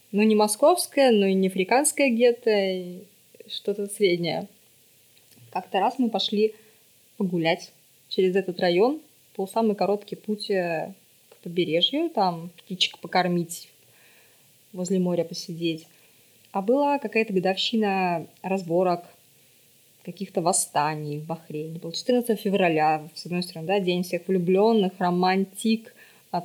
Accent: native